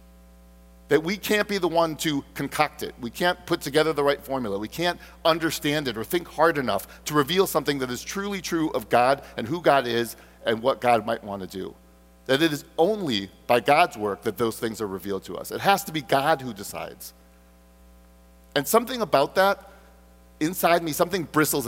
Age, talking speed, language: 40-59, 200 wpm, English